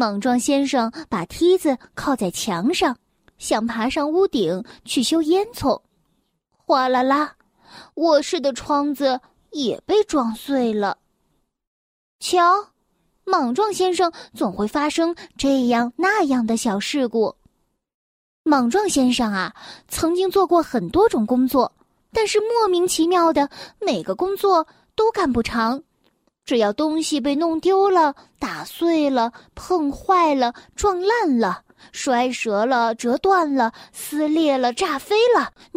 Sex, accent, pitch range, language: female, native, 245-345 Hz, Chinese